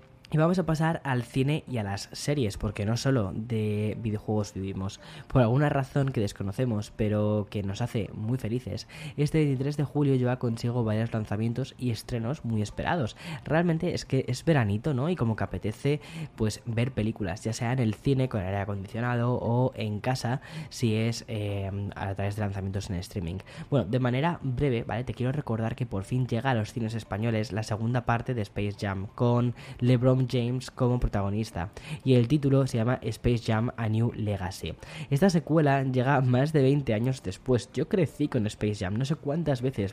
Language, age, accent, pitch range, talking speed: Spanish, 10-29, Spanish, 105-130 Hz, 190 wpm